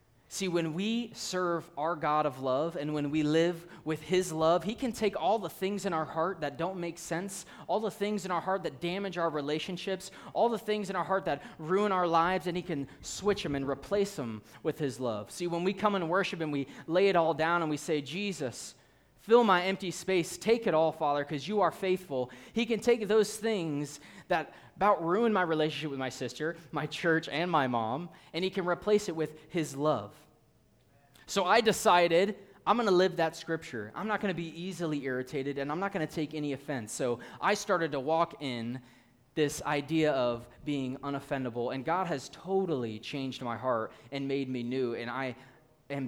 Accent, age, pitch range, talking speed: American, 20-39, 140-190 Hz, 210 wpm